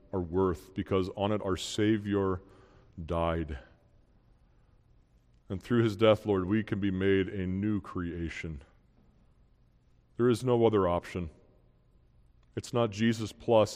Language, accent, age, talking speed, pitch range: English, American, 40-59, 120 wpm, 85-105 Hz